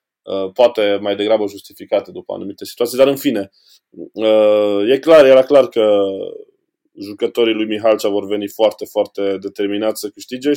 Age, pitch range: 20-39, 100-130 Hz